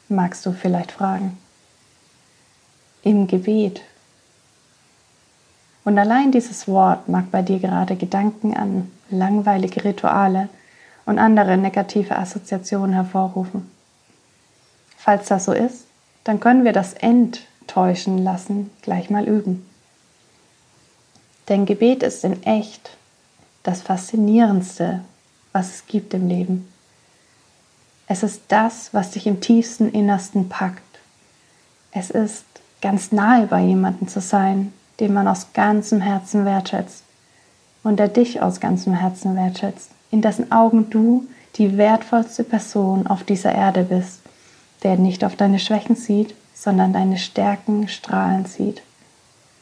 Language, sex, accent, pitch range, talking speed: German, female, German, 190-220 Hz, 120 wpm